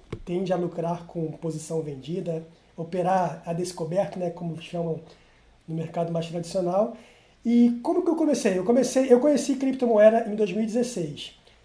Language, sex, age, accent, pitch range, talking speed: Portuguese, male, 20-39, Brazilian, 185-235 Hz, 145 wpm